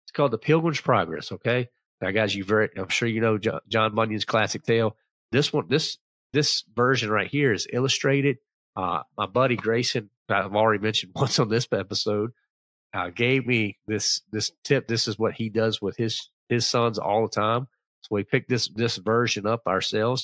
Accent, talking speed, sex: American, 190 wpm, male